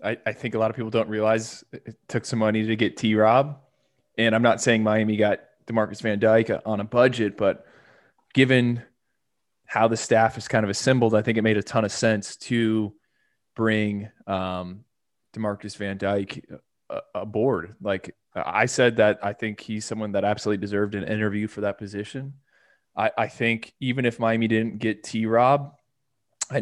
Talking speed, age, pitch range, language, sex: 175 wpm, 20-39, 105-120 Hz, English, male